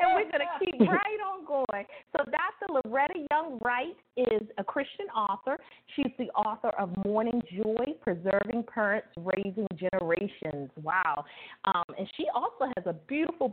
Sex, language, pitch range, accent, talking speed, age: female, English, 180-250 Hz, American, 150 wpm, 30-49